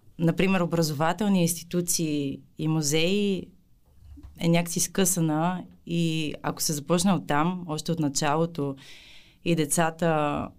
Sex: female